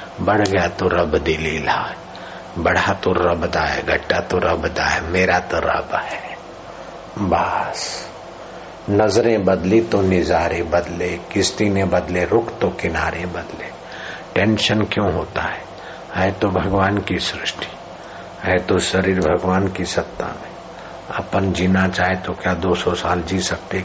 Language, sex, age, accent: Hindi, male, 60-79, native